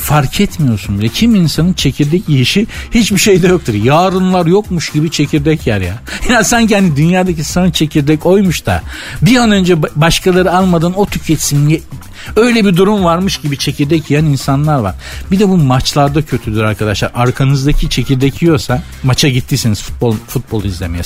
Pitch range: 125-180 Hz